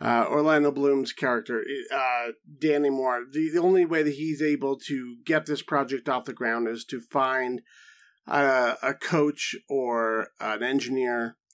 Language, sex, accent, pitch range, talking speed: English, male, American, 130-170 Hz, 155 wpm